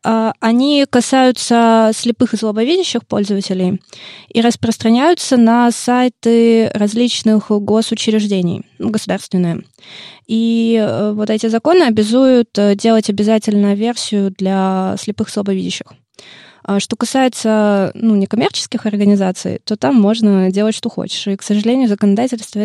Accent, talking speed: native, 105 wpm